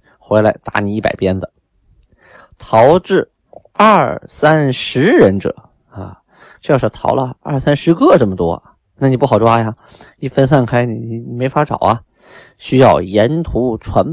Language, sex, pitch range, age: Chinese, male, 95-120 Hz, 20-39